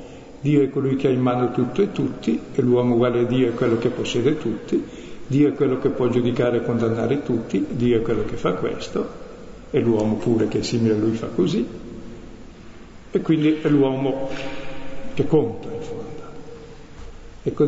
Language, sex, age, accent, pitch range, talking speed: Italian, male, 60-79, native, 115-135 Hz, 185 wpm